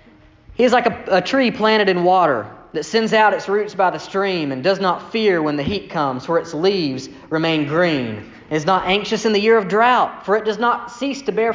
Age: 30-49